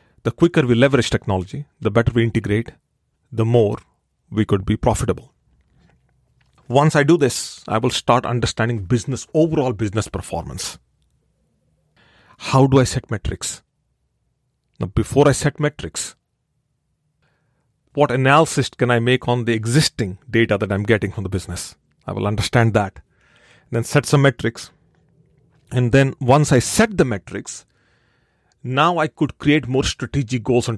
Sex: male